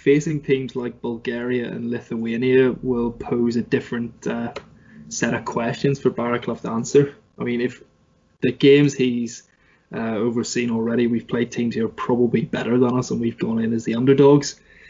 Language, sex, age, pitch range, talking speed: English, male, 20-39, 120-140 Hz, 170 wpm